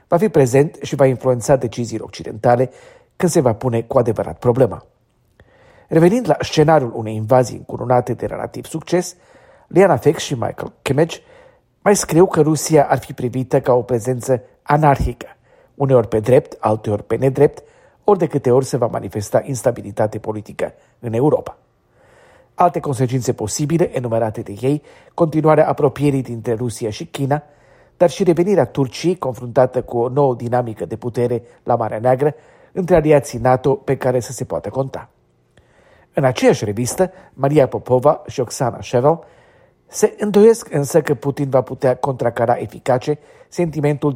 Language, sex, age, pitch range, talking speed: Romanian, male, 40-59, 120-150 Hz, 150 wpm